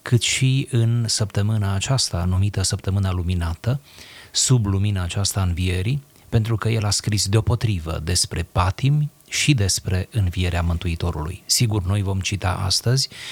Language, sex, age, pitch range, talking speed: Romanian, male, 30-49, 90-120 Hz, 130 wpm